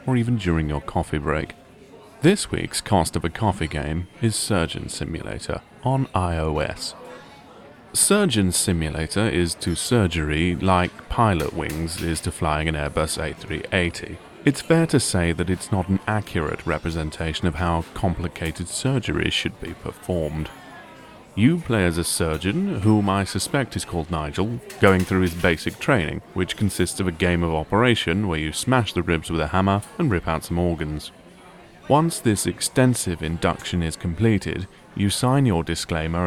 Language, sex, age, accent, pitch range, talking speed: English, male, 30-49, British, 80-105 Hz, 155 wpm